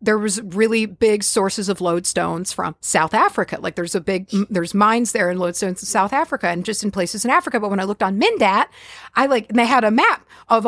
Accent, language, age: American, English, 40-59